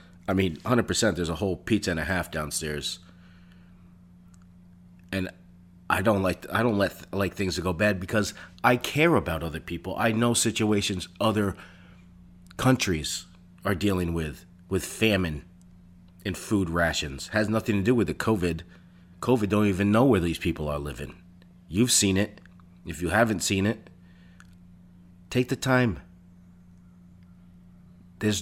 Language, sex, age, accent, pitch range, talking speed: English, male, 40-59, American, 90-100 Hz, 150 wpm